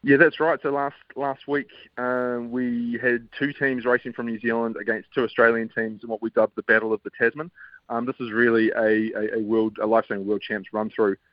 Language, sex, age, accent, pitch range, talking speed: English, male, 20-39, Australian, 100-120 Hz, 215 wpm